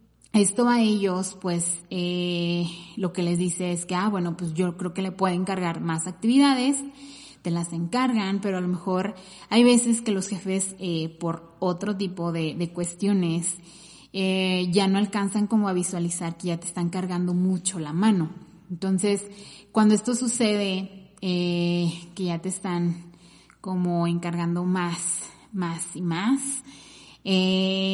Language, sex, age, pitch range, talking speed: Spanish, female, 20-39, 170-195 Hz, 155 wpm